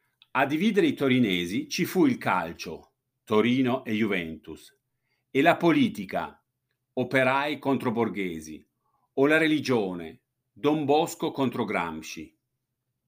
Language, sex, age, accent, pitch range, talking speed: Italian, male, 50-69, native, 115-140 Hz, 110 wpm